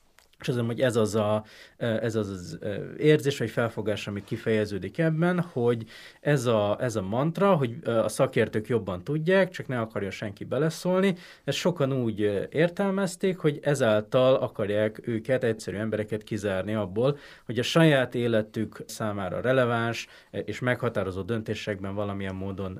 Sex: male